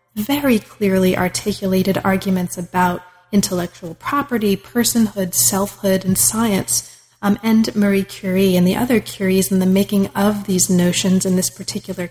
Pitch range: 185-215 Hz